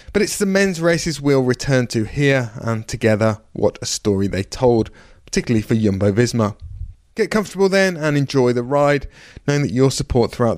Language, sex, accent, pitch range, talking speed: English, male, British, 110-140 Hz, 180 wpm